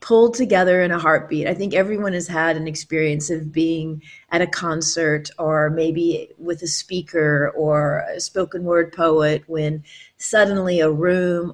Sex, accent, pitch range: female, American, 160-210 Hz